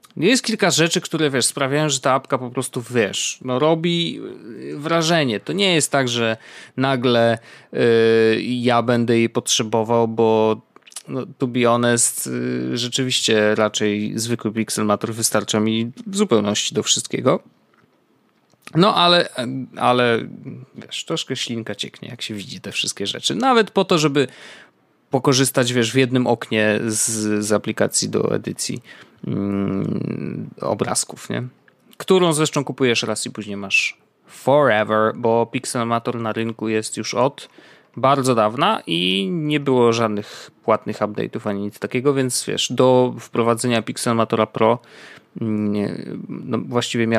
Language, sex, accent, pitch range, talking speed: Polish, male, native, 110-135 Hz, 130 wpm